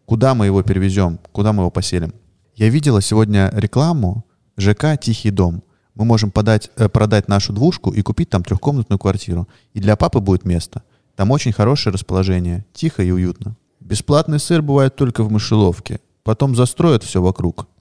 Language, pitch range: Russian, 95-120 Hz